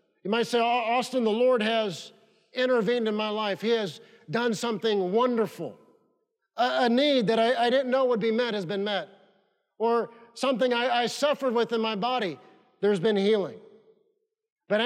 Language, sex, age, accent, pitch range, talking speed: English, male, 50-69, American, 195-255 Hz, 175 wpm